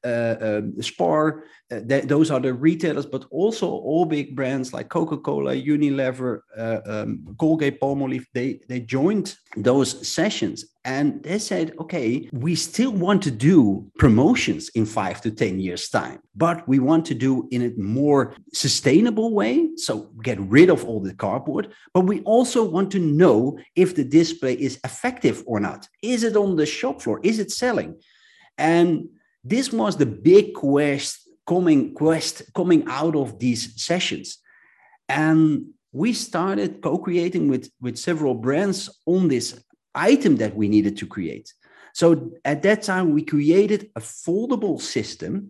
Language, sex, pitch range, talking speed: English, male, 130-190 Hz, 155 wpm